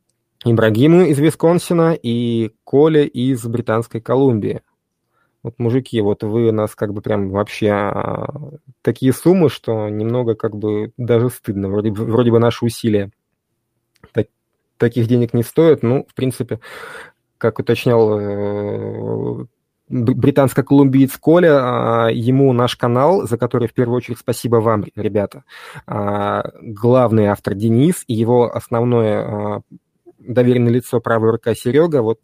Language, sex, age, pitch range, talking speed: Russian, male, 20-39, 110-130 Hz, 135 wpm